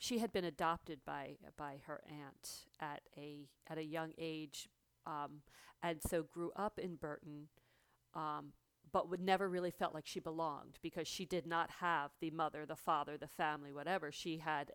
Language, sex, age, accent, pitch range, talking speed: English, female, 40-59, American, 150-185 Hz, 180 wpm